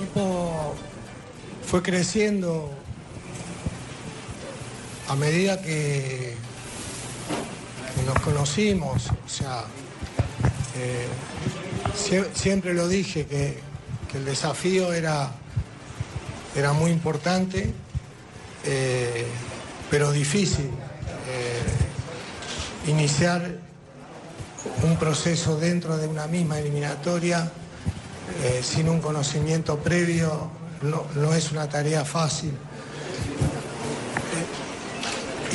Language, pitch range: Spanish, 135-165 Hz